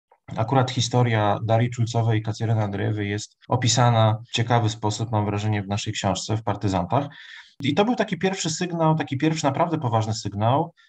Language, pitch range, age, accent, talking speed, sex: Polish, 105-125 Hz, 30-49, native, 160 wpm, male